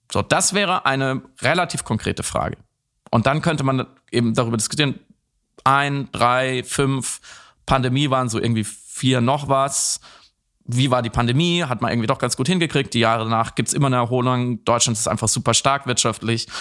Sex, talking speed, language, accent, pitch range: male, 175 wpm, German, German, 115-150 Hz